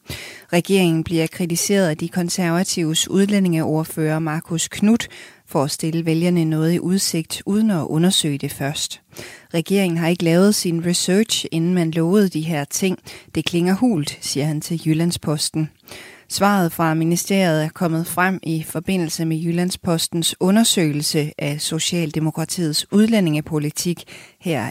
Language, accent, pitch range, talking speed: Danish, native, 155-175 Hz, 135 wpm